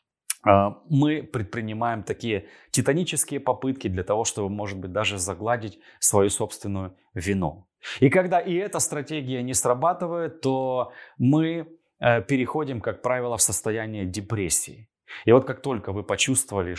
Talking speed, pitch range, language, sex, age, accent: 130 wpm, 105-140 Hz, Russian, male, 20-39, native